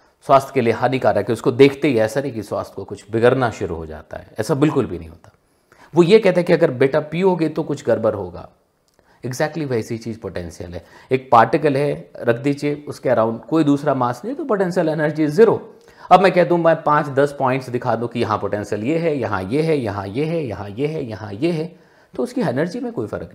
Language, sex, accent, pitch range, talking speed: Hindi, male, native, 105-150 Hz, 230 wpm